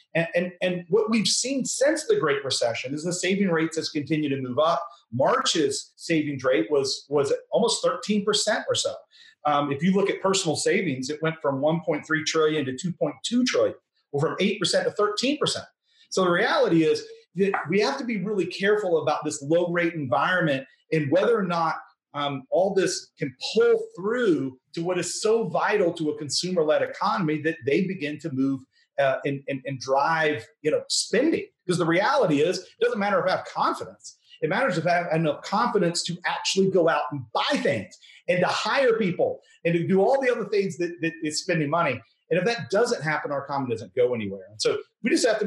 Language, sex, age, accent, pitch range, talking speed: English, male, 40-59, American, 155-250 Hz, 210 wpm